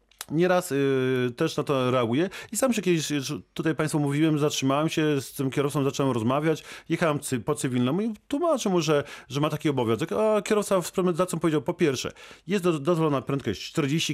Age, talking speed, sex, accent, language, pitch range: 40-59, 190 wpm, male, native, Polish, 135-175 Hz